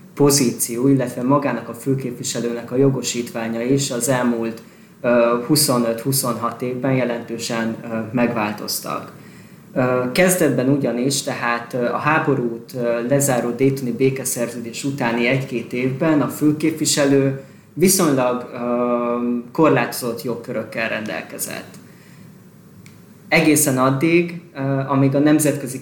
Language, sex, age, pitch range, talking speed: Hungarian, male, 20-39, 120-145 Hz, 85 wpm